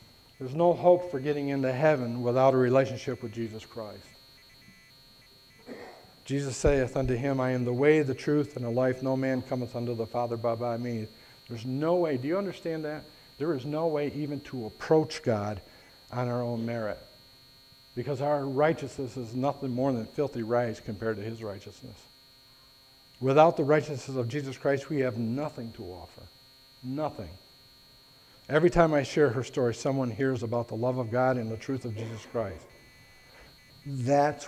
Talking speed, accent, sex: 170 wpm, American, male